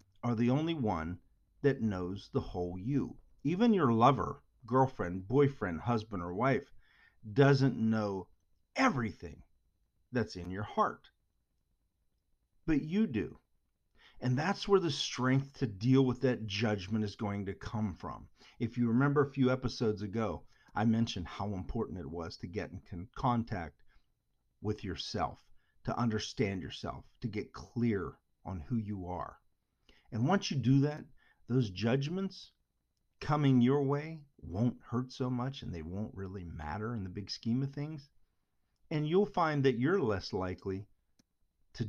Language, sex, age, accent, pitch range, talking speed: English, male, 40-59, American, 95-135 Hz, 150 wpm